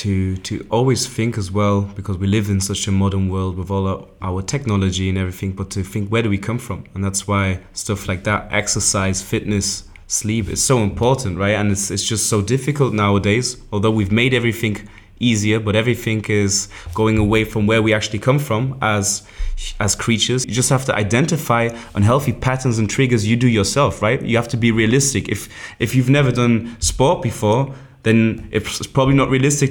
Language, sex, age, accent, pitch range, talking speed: English, male, 20-39, German, 105-130 Hz, 200 wpm